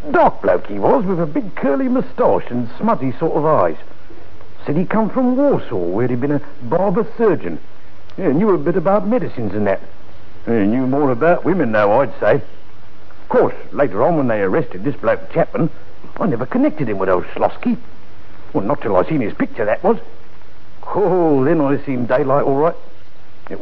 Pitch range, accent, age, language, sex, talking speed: 105-140 Hz, British, 60-79, English, male, 195 wpm